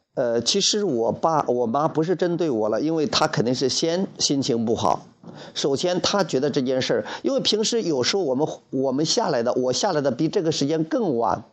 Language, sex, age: Chinese, male, 50-69